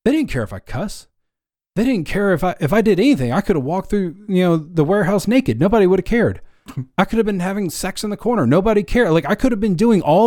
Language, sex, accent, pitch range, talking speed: English, male, American, 125-175 Hz, 275 wpm